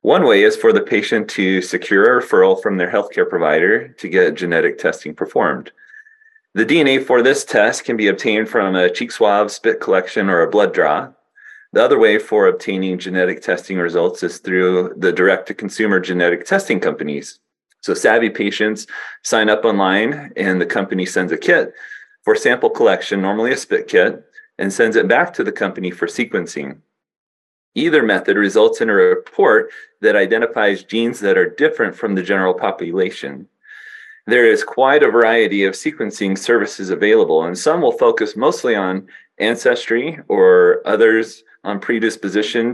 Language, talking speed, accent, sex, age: English, 165 wpm, American, male, 30-49